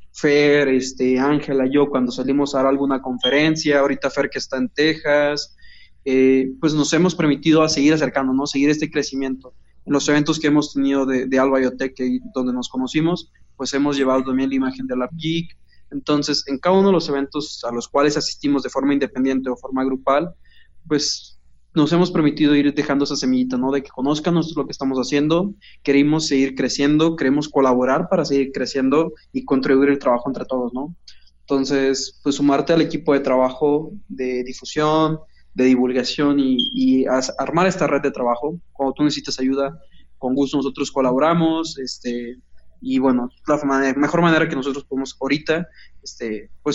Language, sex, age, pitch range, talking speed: Spanish, male, 20-39, 130-150 Hz, 180 wpm